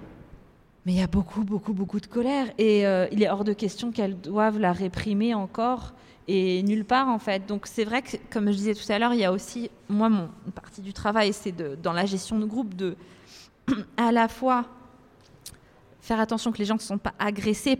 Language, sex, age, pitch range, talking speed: French, female, 20-39, 205-250 Hz, 225 wpm